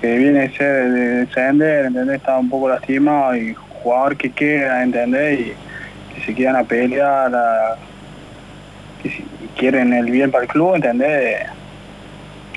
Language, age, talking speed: Spanish, 20-39, 150 wpm